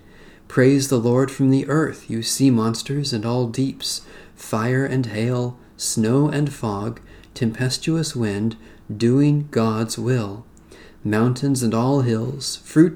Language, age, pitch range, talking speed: English, 40-59, 110-140 Hz, 130 wpm